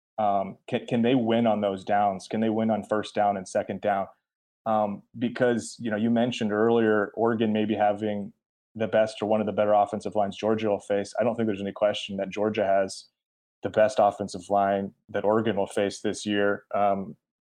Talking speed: 200 wpm